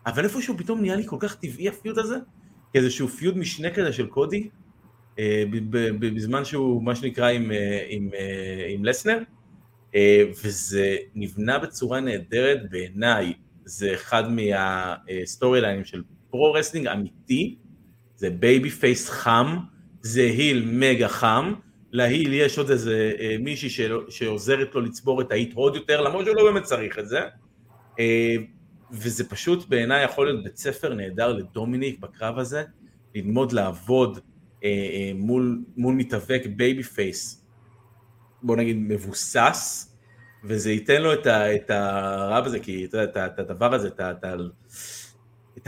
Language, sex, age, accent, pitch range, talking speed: Hebrew, male, 30-49, native, 105-130 Hz, 135 wpm